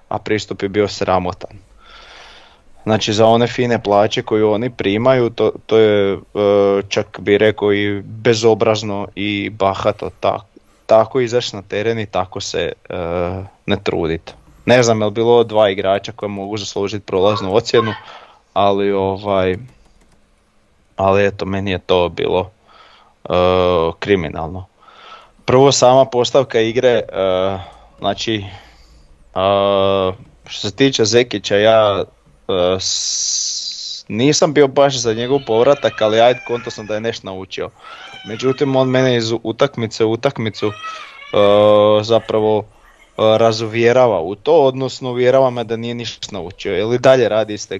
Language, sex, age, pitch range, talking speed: Croatian, male, 20-39, 100-120 Hz, 140 wpm